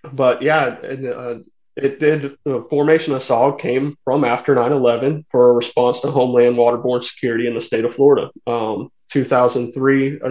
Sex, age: male, 30-49